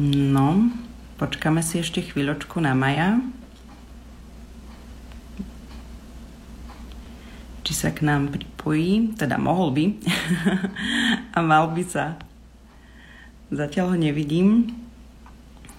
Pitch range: 145-190 Hz